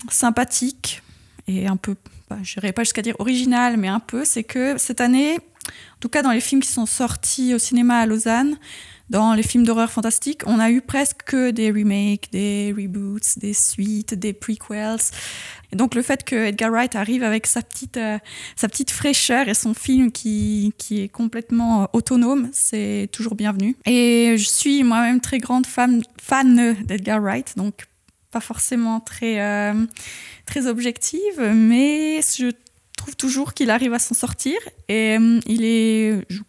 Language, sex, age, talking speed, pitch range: French, female, 20-39, 175 wpm, 210-245 Hz